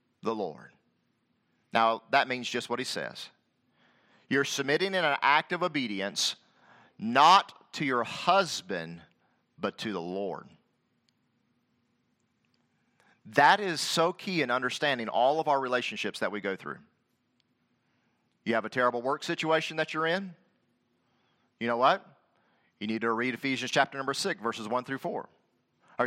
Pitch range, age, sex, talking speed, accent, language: 125-165 Hz, 40-59, male, 145 wpm, American, English